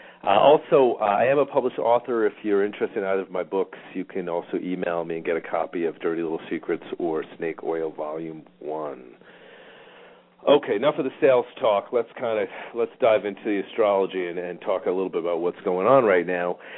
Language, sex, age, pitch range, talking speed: English, male, 40-59, 90-115 Hz, 215 wpm